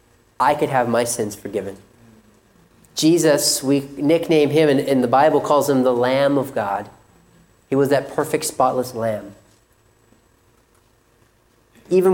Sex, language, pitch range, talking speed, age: male, English, 120-180 Hz, 135 wpm, 30-49